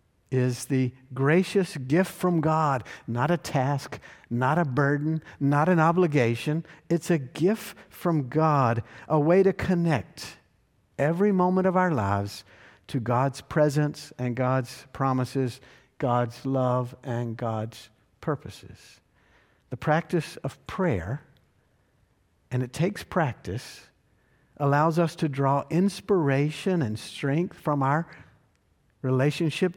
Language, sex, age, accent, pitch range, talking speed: English, male, 50-69, American, 125-170 Hz, 115 wpm